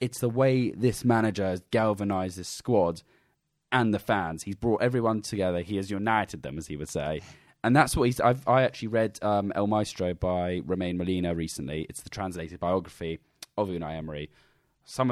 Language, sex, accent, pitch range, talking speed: English, male, British, 90-115 Hz, 185 wpm